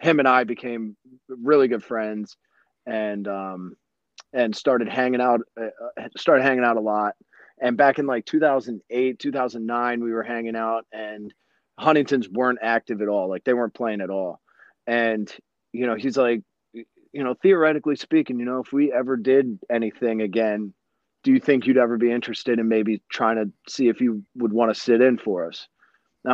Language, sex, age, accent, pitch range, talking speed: English, male, 30-49, American, 110-130 Hz, 180 wpm